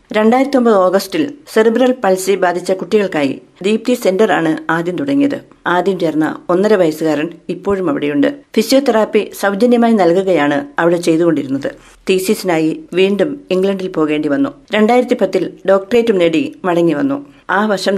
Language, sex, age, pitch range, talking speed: Malayalam, female, 50-69, 170-225 Hz, 115 wpm